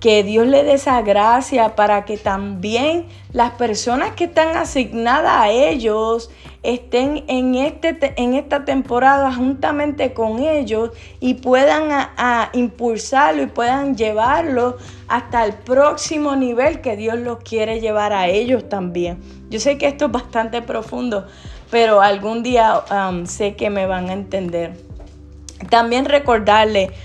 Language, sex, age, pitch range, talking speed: Spanish, female, 20-39, 210-265 Hz, 135 wpm